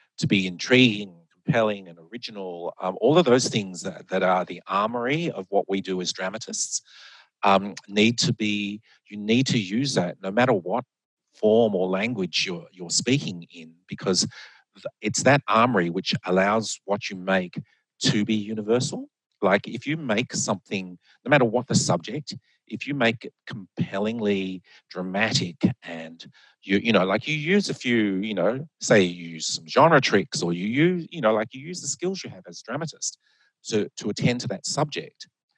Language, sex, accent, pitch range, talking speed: English, male, Australian, 90-120 Hz, 180 wpm